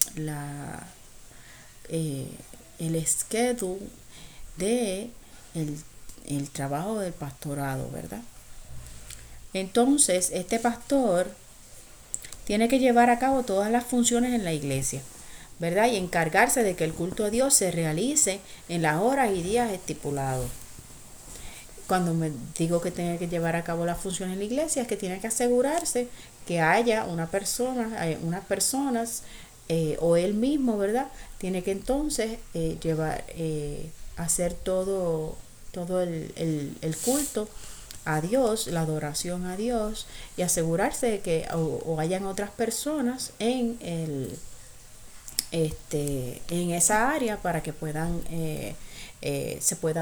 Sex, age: female, 30-49